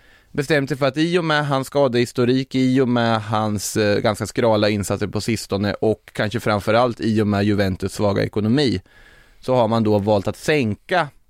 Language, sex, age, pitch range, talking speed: Swedish, male, 20-39, 100-120 Hz, 180 wpm